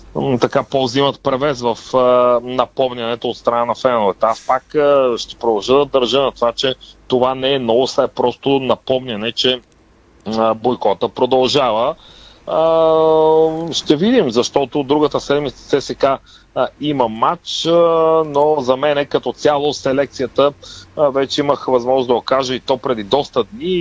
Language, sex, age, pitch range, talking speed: Bulgarian, male, 30-49, 125-150 Hz, 150 wpm